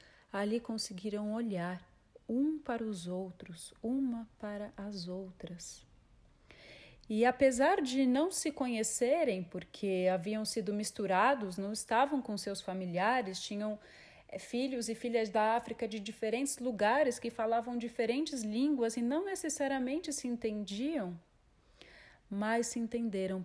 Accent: Brazilian